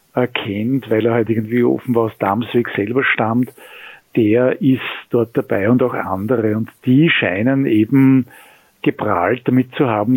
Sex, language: male, German